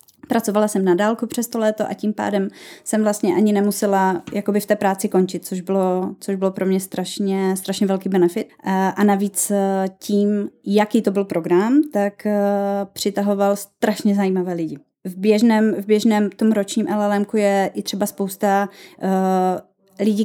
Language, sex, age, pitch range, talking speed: Czech, female, 20-39, 185-205 Hz, 155 wpm